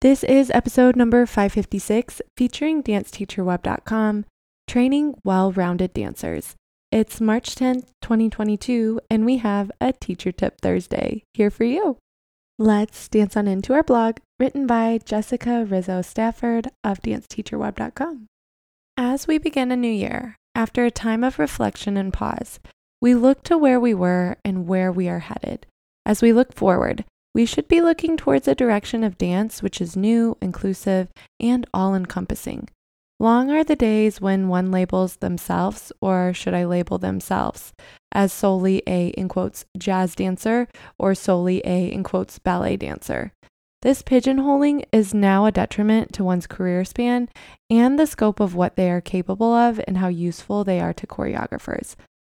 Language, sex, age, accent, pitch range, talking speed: English, female, 20-39, American, 185-245 Hz, 150 wpm